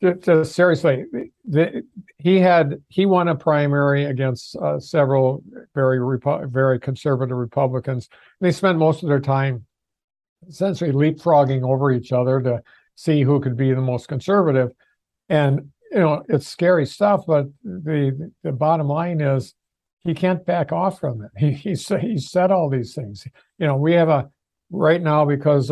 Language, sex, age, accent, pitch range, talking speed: English, male, 60-79, American, 130-160 Hz, 165 wpm